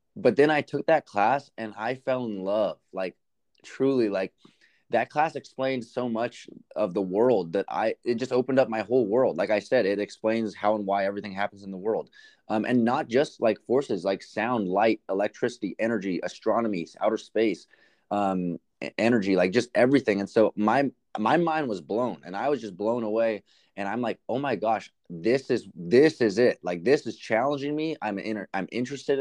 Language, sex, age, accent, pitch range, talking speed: English, male, 20-39, American, 100-125 Hz, 195 wpm